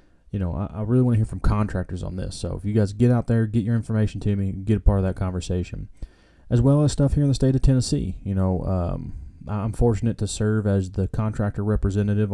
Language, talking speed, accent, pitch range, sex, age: English, 250 wpm, American, 95-115 Hz, male, 30-49